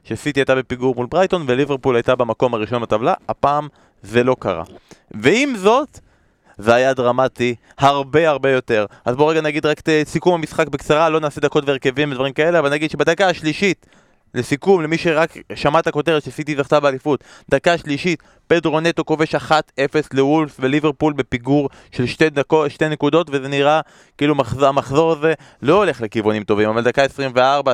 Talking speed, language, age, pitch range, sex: 160 wpm, Hebrew, 20-39, 130-155 Hz, male